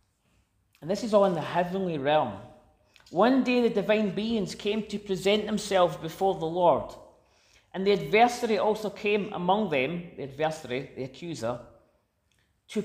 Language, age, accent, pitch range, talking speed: English, 40-59, British, 175-220 Hz, 150 wpm